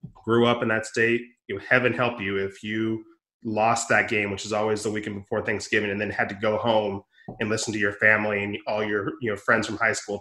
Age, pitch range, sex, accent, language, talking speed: 20-39, 100-110 Hz, male, American, English, 245 wpm